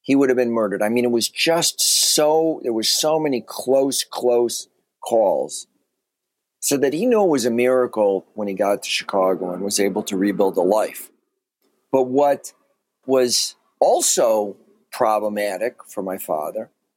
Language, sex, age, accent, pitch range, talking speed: English, male, 50-69, American, 110-130 Hz, 165 wpm